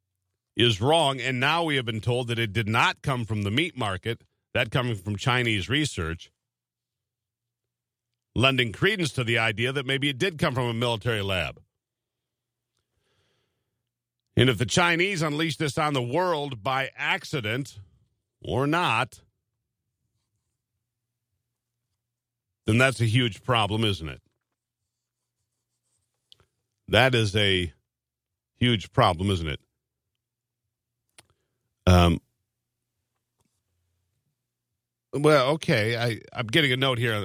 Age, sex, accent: 50-69, male, American